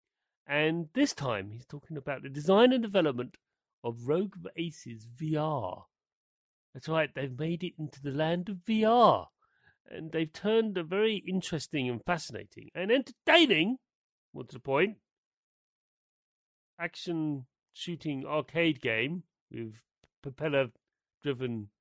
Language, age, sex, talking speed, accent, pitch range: English, 40-59, male, 120 wpm, British, 140-200 Hz